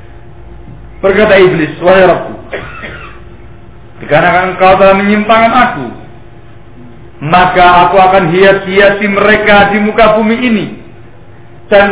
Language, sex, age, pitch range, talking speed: Indonesian, male, 50-69, 120-185 Hz, 80 wpm